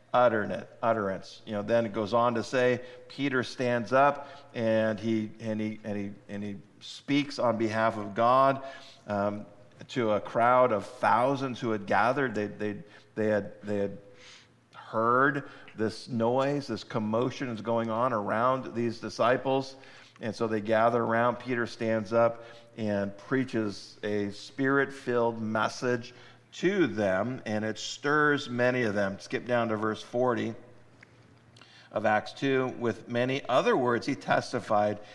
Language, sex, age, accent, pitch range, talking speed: English, male, 50-69, American, 110-125 Hz, 145 wpm